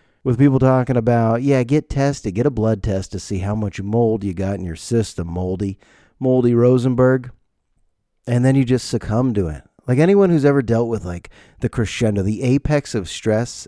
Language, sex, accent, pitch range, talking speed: English, male, American, 100-130 Hz, 195 wpm